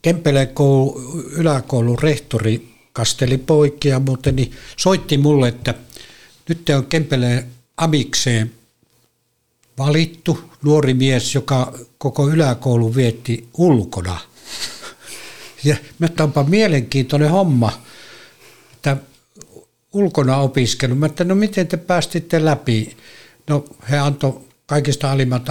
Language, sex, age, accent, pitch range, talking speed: Finnish, male, 60-79, native, 120-150 Hz, 95 wpm